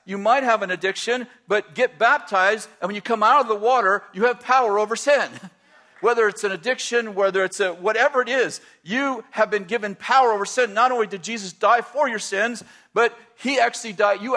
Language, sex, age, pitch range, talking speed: English, male, 50-69, 205-245 Hz, 215 wpm